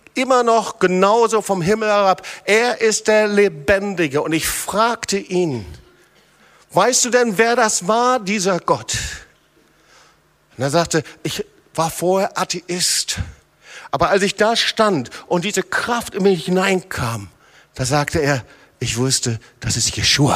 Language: German